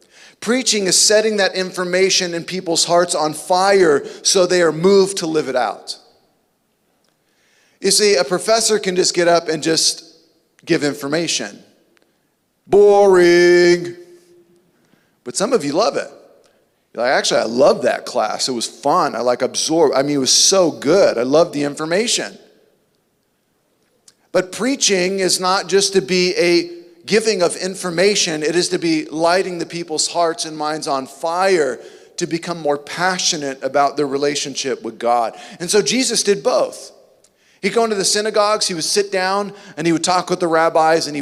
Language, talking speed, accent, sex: English, 165 wpm, American, male